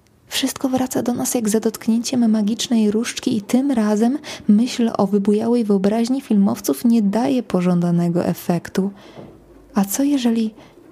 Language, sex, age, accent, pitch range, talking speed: Polish, female, 20-39, native, 180-225 Hz, 130 wpm